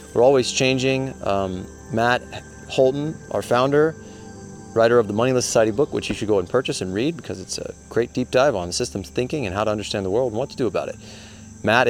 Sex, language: male, English